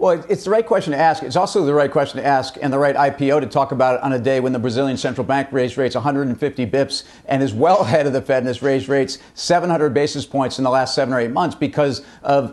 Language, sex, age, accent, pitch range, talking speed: English, male, 50-69, American, 135-165 Hz, 275 wpm